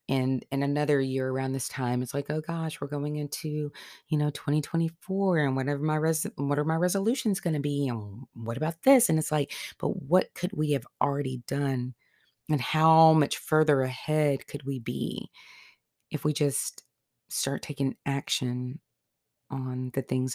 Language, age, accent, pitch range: English, 30-49, American, 130-155 Hz